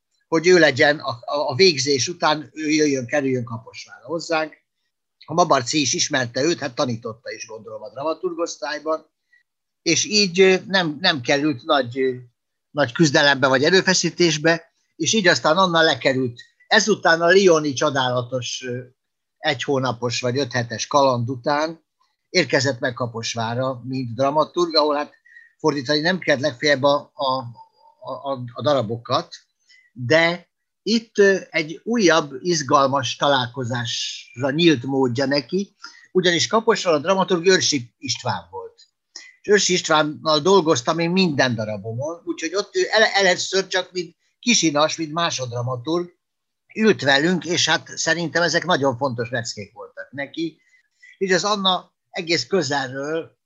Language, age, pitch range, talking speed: Hungarian, 60-79, 135-180 Hz, 125 wpm